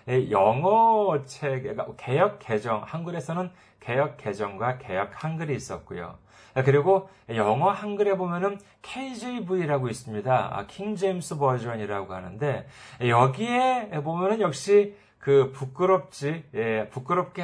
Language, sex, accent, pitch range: Korean, male, native, 125-180 Hz